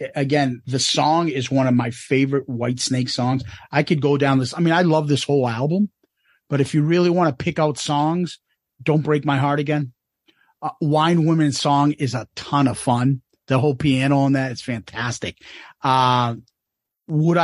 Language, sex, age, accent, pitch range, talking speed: English, male, 40-59, American, 140-205 Hz, 185 wpm